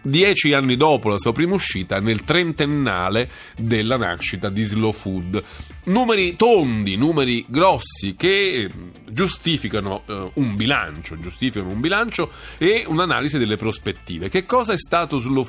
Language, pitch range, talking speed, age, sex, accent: Italian, 120-165 Hz, 135 wpm, 40-59, male, native